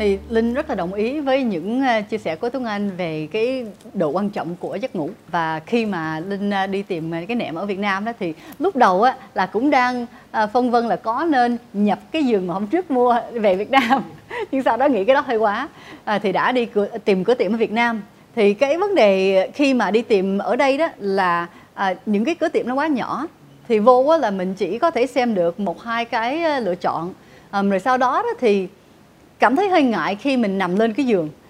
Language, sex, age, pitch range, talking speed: Vietnamese, female, 20-39, 195-260 Hz, 240 wpm